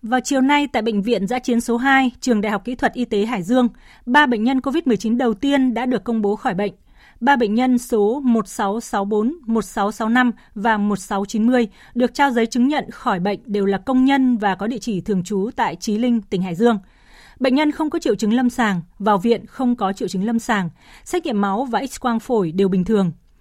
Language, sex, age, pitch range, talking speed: Vietnamese, female, 20-39, 205-255 Hz, 225 wpm